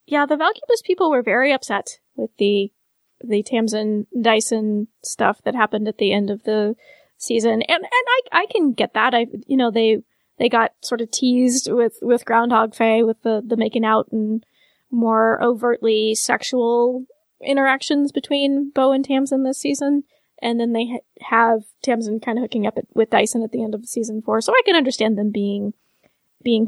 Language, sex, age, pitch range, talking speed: English, female, 20-39, 220-275 Hz, 185 wpm